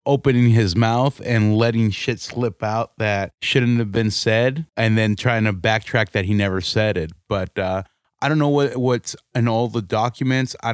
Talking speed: 190 wpm